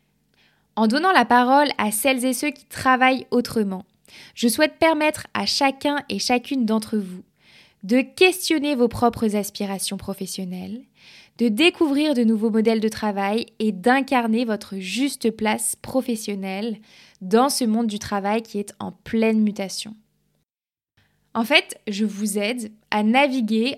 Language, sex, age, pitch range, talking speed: French, female, 20-39, 210-255 Hz, 140 wpm